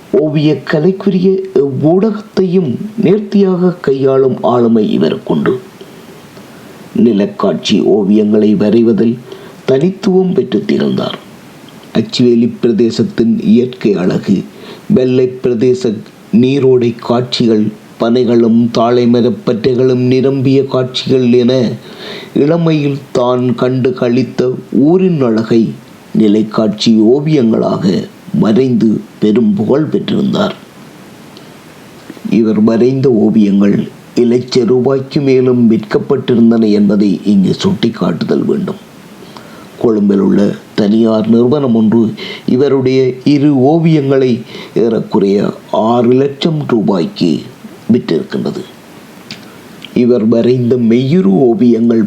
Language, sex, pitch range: Tamil, male, 115-160 Hz